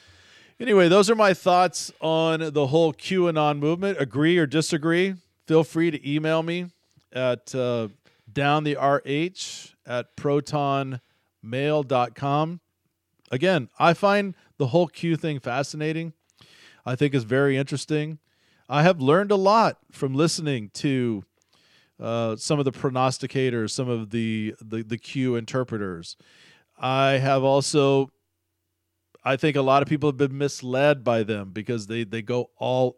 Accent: American